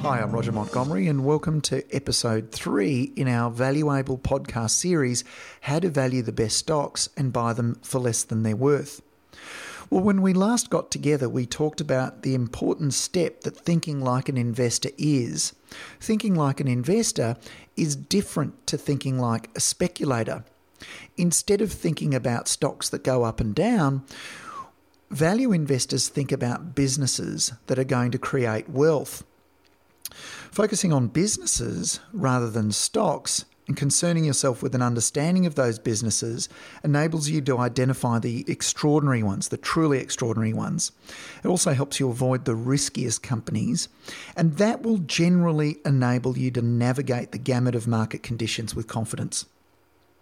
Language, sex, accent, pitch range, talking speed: English, male, Australian, 120-155 Hz, 150 wpm